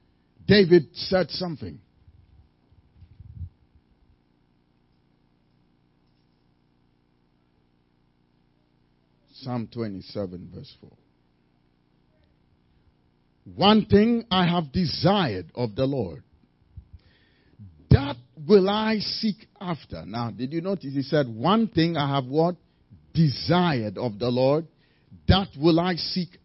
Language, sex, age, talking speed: English, male, 50-69, 90 wpm